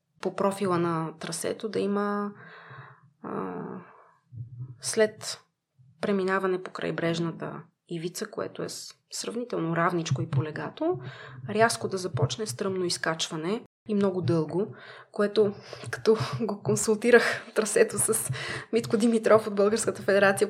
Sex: female